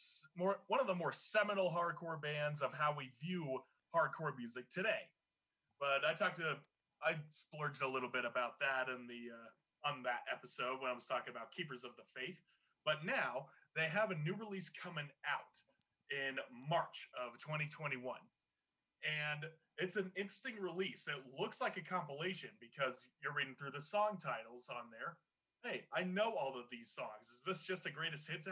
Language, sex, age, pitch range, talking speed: English, male, 30-49, 135-185 Hz, 180 wpm